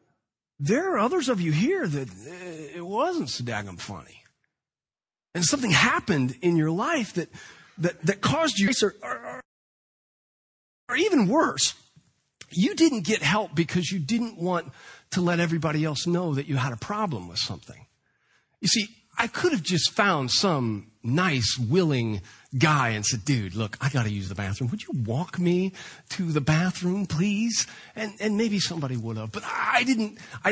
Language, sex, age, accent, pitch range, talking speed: English, male, 40-59, American, 130-210 Hz, 165 wpm